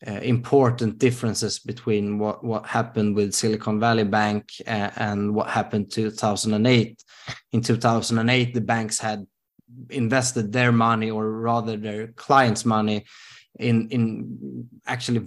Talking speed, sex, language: 130 wpm, male, Swedish